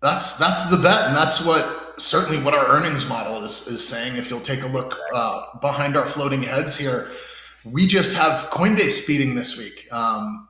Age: 30-49